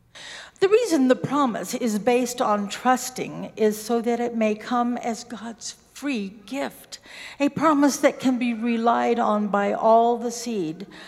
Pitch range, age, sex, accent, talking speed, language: 205-255 Hz, 60-79, female, American, 155 wpm, English